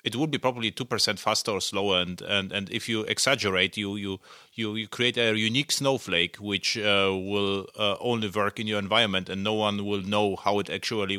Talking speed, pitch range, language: 210 wpm, 105-135 Hz, English